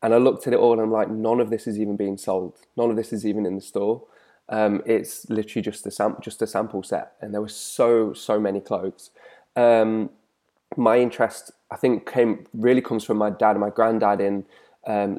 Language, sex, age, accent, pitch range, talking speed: English, male, 20-39, British, 105-115 Hz, 225 wpm